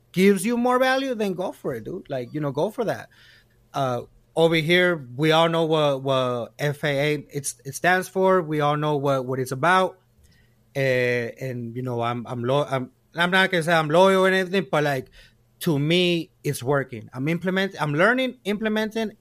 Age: 30-49